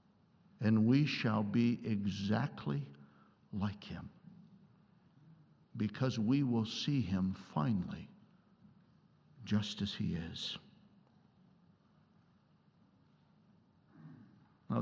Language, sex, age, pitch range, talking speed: English, male, 60-79, 110-155 Hz, 75 wpm